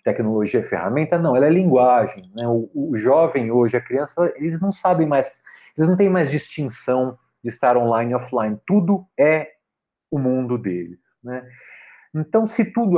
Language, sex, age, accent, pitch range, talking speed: Portuguese, male, 40-59, Brazilian, 120-170 Hz, 170 wpm